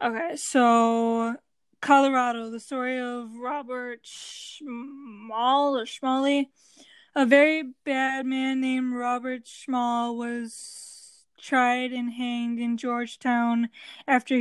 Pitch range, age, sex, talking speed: 235-265 Hz, 10-29, female, 100 wpm